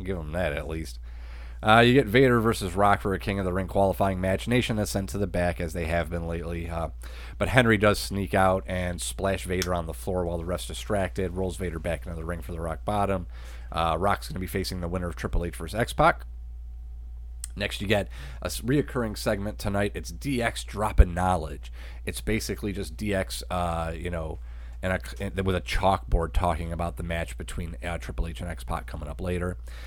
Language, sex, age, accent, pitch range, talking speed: English, male, 30-49, American, 80-100 Hz, 215 wpm